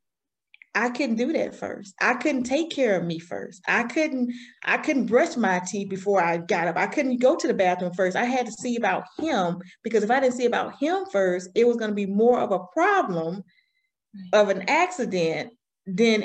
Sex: female